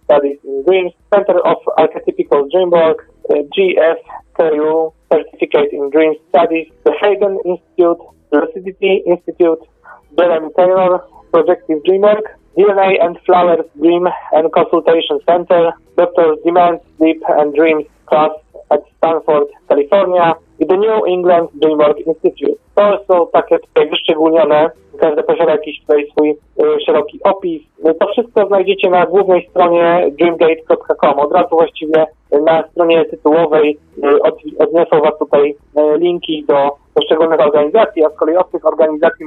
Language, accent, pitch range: Polish, native, 150-190 Hz